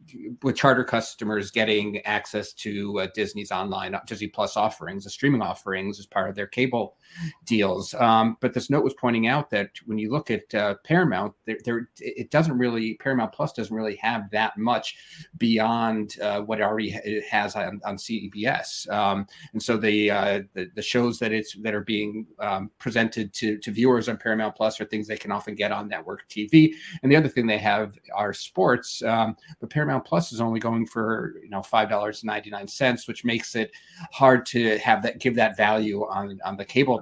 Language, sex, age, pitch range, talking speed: English, male, 30-49, 105-125 Hz, 200 wpm